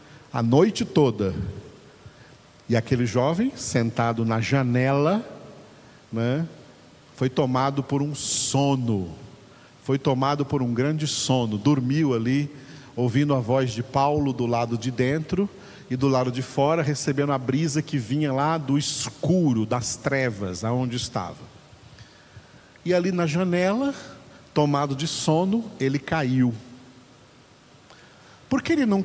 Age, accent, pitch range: 50-69, Brazilian, 120-150 Hz